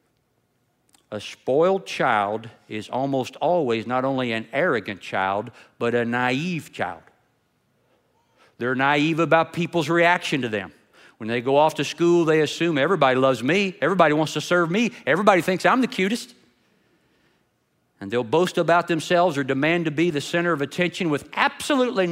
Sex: male